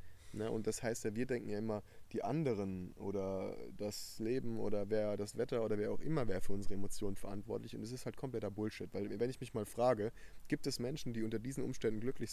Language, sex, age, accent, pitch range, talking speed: German, male, 20-39, German, 100-130 Hz, 230 wpm